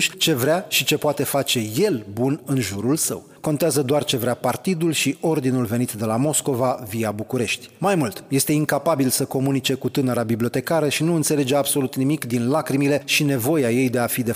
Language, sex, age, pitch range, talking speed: Romanian, male, 30-49, 125-155 Hz, 195 wpm